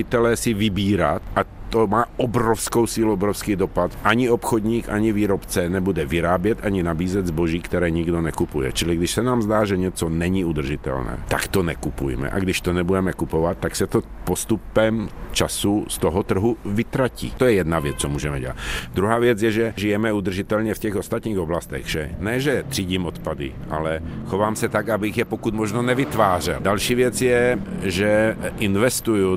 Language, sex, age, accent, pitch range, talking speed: Czech, male, 50-69, native, 85-110 Hz, 170 wpm